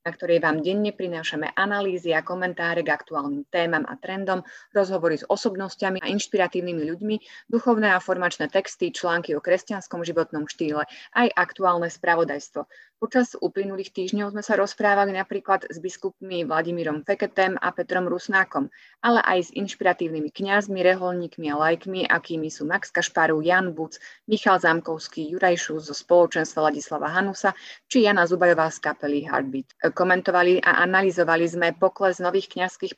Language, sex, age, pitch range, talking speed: Slovak, female, 20-39, 160-190 Hz, 145 wpm